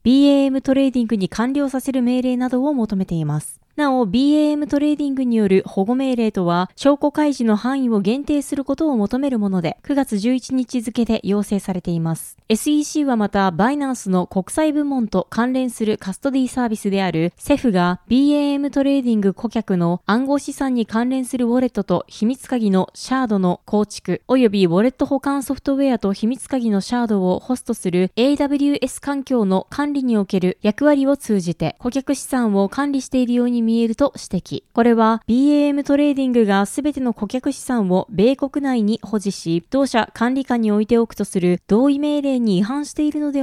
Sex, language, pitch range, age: female, Japanese, 205-275 Hz, 20-39